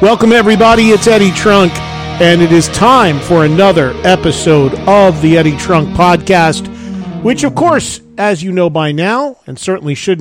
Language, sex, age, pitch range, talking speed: English, male, 40-59, 165-210 Hz, 165 wpm